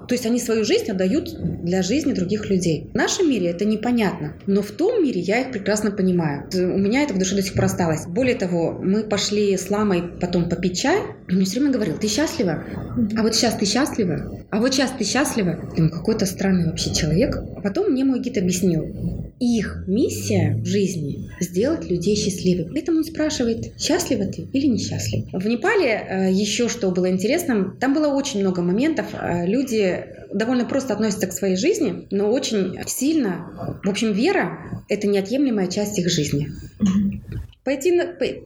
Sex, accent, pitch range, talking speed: female, native, 185-250 Hz, 180 wpm